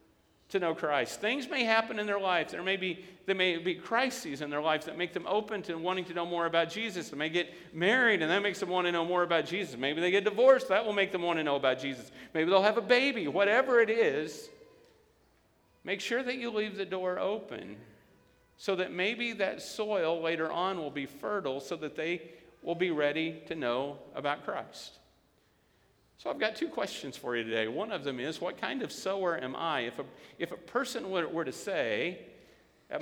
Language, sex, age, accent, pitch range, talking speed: English, male, 50-69, American, 150-205 Hz, 220 wpm